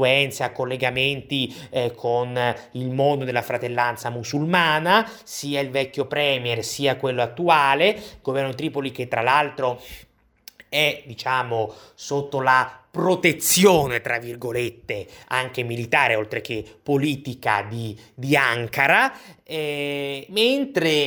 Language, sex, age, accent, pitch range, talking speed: Italian, male, 30-49, native, 120-150 Hz, 105 wpm